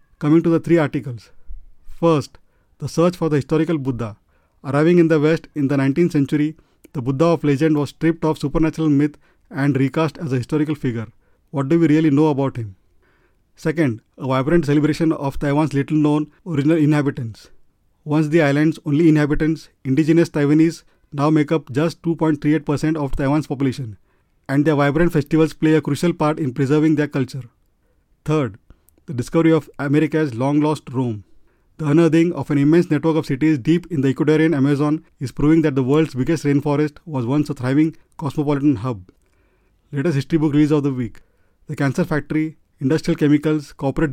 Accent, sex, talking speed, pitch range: Indian, male, 170 wpm, 135-155 Hz